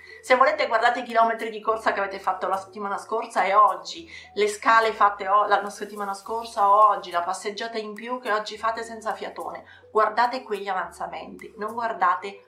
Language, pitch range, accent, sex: Italian, 195-250 Hz, native, female